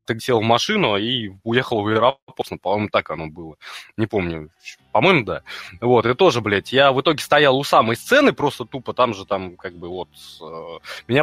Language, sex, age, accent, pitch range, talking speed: Russian, male, 20-39, native, 105-140 Hz, 190 wpm